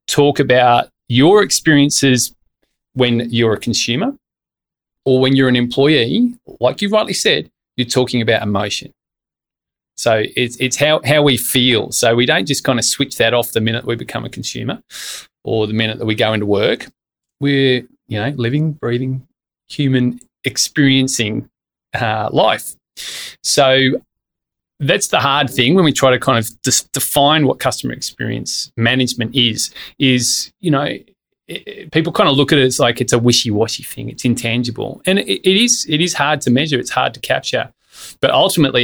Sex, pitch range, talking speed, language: male, 120-145 Hz, 165 wpm, English